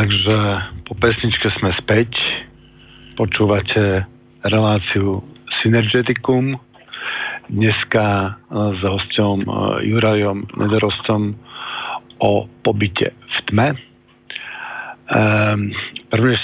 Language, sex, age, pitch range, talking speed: Slovak, male, 50-69, 105-120 Hz, 70 wpm